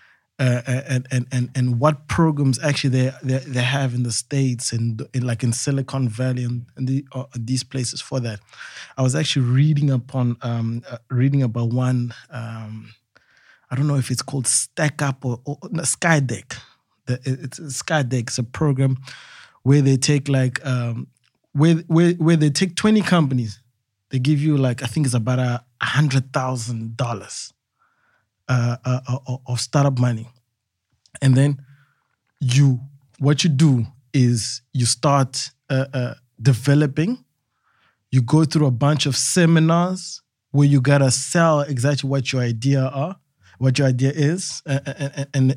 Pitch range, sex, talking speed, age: 125-145 Hz, male, 160 wpm, 20-39